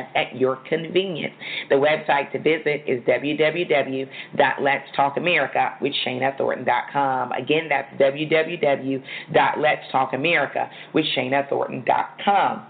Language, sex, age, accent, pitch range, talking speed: English, female, 40-59, American, 135-165 Hz, 55 wpm